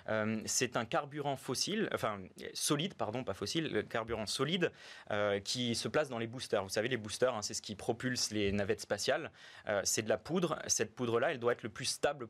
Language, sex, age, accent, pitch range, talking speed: French, male, 20-39, French, 110-140 Hz, 210 wpm